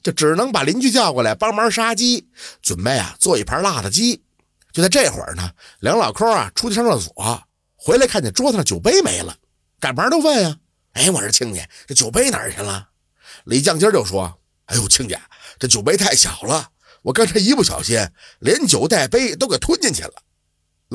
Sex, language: male, Chinese